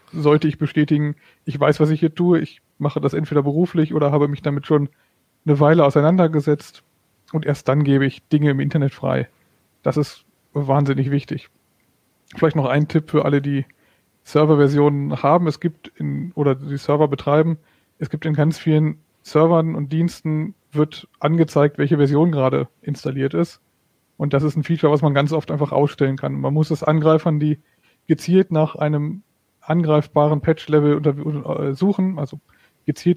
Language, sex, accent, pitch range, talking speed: German, male, German, 140-155 Hz, 165 wpm